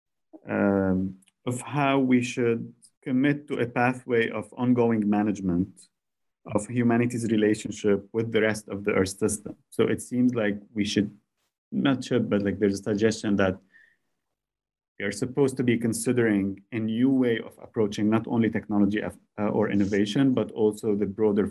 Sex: male